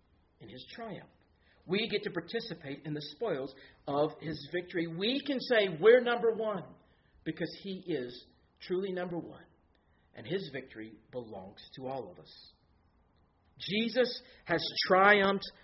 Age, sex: 50-69, male